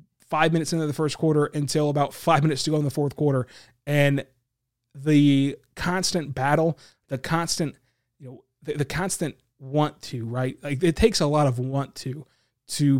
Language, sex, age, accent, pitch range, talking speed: English, male, 20-39, American, 135-165 Hz, 180 wpm